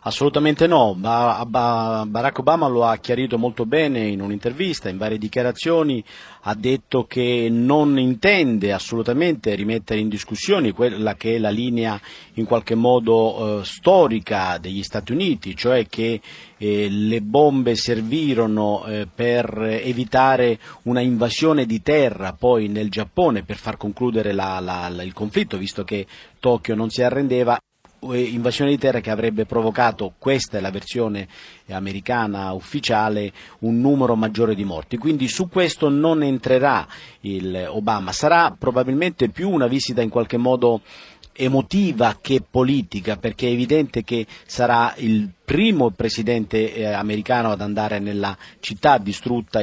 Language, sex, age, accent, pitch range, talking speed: Italian, male, 40-59, native, 105-135 Hz, 130 wpm